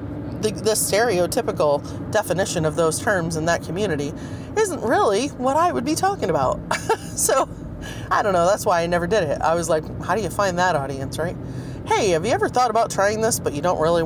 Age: 30-49